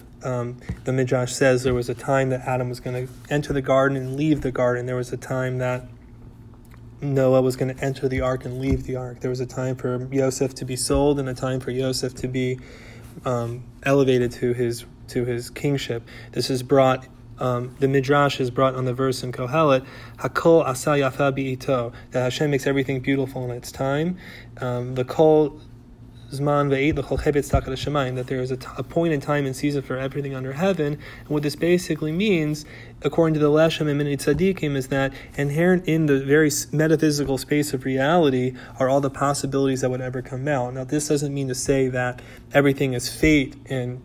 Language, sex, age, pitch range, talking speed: English, male, 20-39, 125-140 Hz, 190 wpm